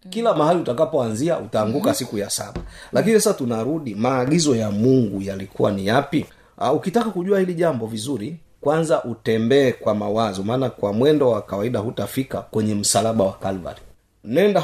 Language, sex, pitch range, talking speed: Swahili, male, 105-150 Hz, 150 wpm